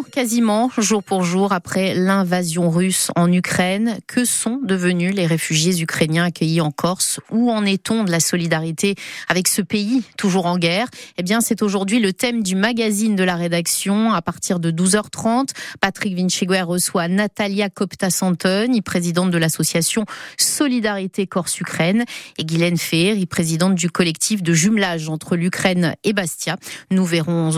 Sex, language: female, French